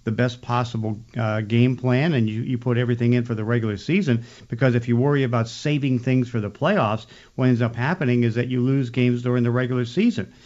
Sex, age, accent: male, 50-69, American